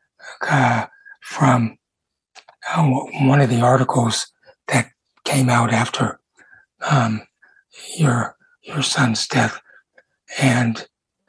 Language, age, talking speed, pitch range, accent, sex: English, 60-79, 90 wpm, 120-170 Hz, American, male